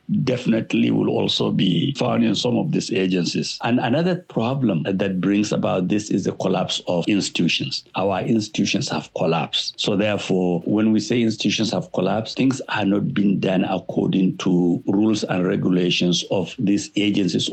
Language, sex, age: English, male, 60-79